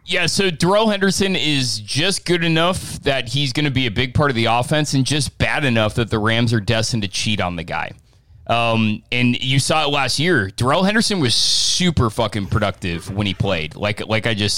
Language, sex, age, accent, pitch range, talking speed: English, male, 20-39, American, 105-135 Hz, 220 wpm